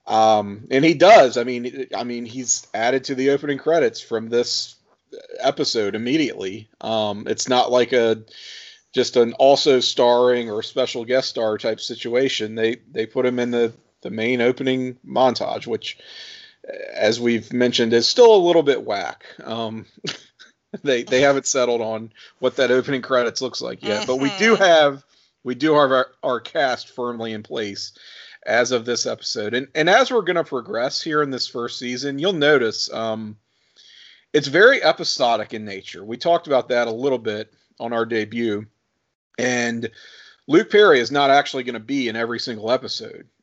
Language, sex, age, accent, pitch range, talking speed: English, male, 40-59, American, 115-140 Hz, 175 wpm